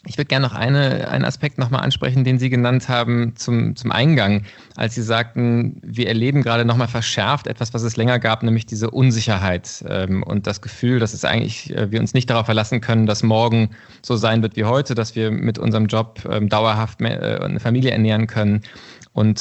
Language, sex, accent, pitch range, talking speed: German, male, German, 110-130 Hz, 200 wpm